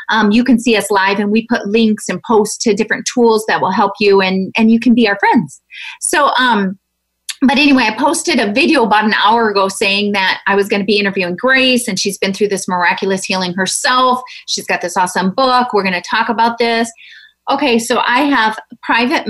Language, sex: English, female